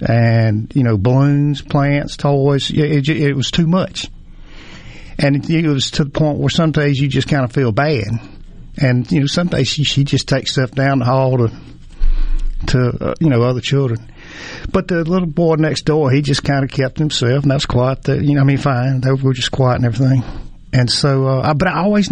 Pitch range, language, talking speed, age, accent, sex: 120-145 Hz, English, 220 wpm, 50-69, American, male